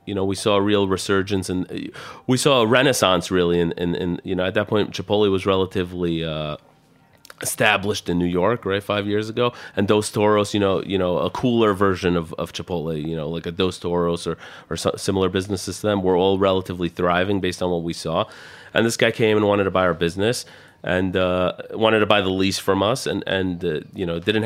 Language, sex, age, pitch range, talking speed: English, male, 30-49, 85-105 Hz, 230 wpm